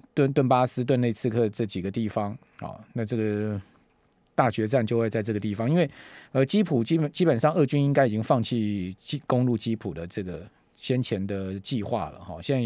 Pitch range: 115-150 Hz